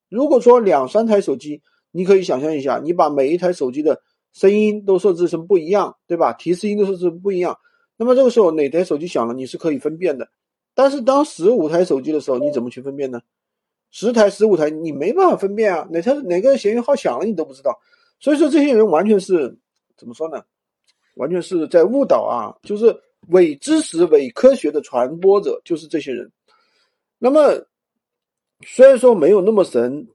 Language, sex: Chinese, male